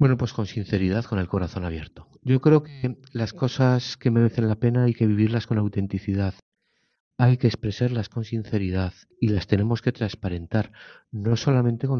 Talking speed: 175 wpm